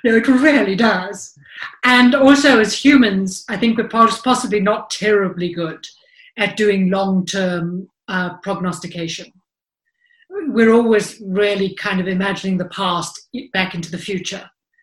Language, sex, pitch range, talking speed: English, female, 180-230 Hz, 125 wpm